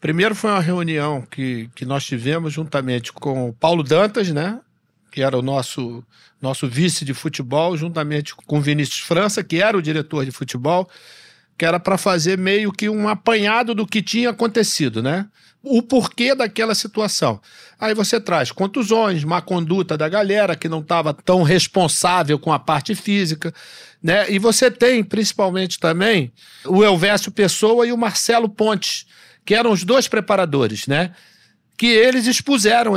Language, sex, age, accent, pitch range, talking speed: Portuguese, male, 50-69, Brazilian, 155-220 Hz, 160 wpm